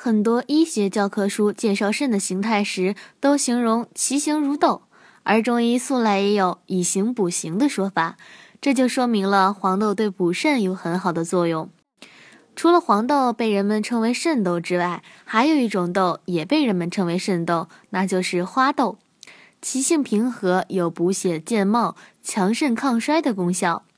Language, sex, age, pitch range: Chinese, female, 20-39, 185-250 Hz